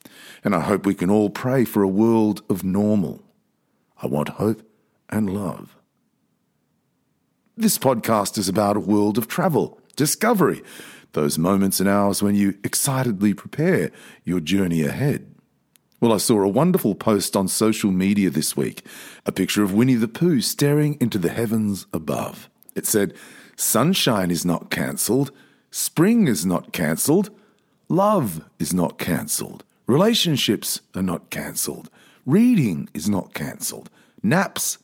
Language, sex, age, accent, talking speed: English, male, 50-69, Australian, 140 wpm